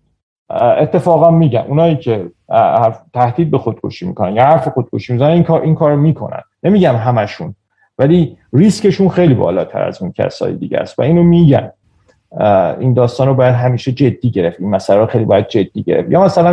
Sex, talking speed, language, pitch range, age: male, 165 wpm, Persian, 125-160 Hz, 40-59